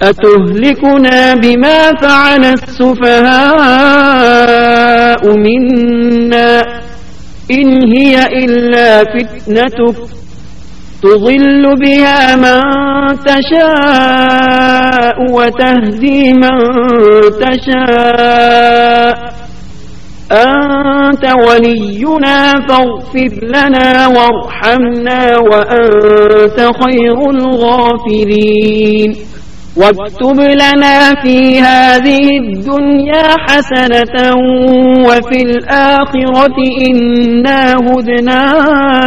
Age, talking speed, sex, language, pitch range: 50-69, 55 wpm, male, Urdu, 235-265 Hz